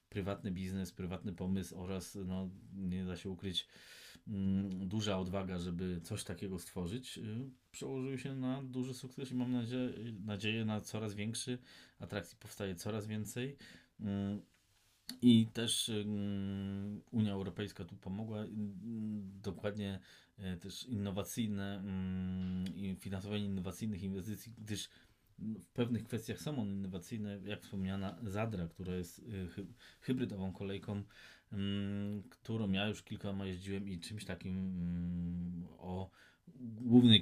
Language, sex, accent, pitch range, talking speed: Polish, male, native, 90-105 Hz, 115 wpm